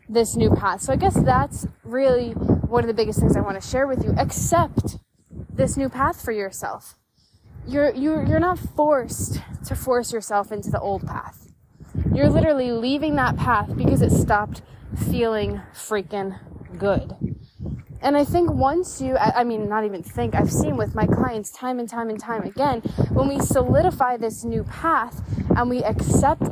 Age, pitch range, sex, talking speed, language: 20-39, 205-275 Hz, female, 175 wpm, English